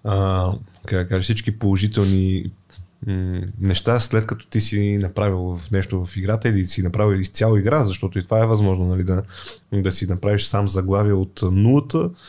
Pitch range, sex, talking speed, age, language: 100-125 Hz, male, 160 wpm, 20-39, Bulgarian